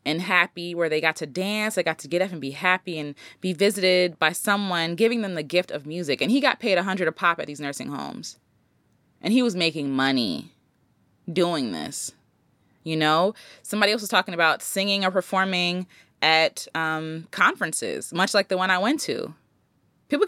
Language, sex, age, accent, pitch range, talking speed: English, female, 20-39, American, 160-215 Hz, 195 wpm